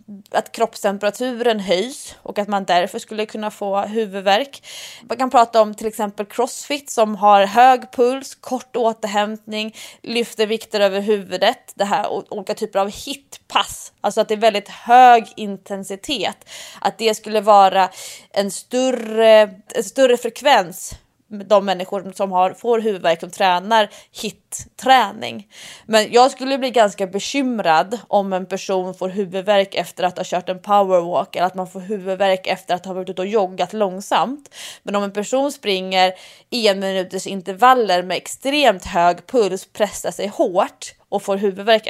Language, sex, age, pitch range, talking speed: English, female, 20-39, 190-225 Hz, 155 wpm